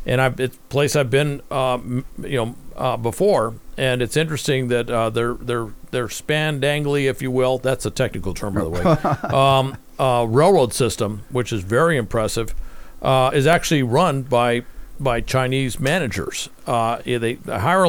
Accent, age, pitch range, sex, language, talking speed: American, 50-69, 120-150 Hz, male, English, 165 wpm